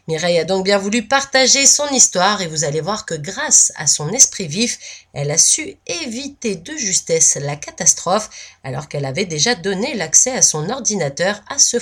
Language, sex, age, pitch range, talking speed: French, female, 30-49, 155-240 Hz, 190 wpm